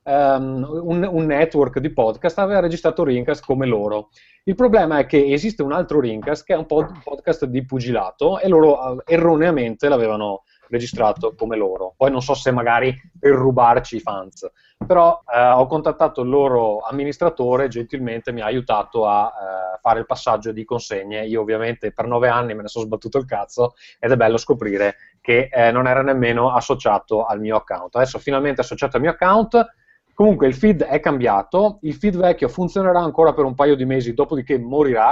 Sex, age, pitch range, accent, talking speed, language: male, 30-49, 120-160 Hz, native, 175 wpm, Italian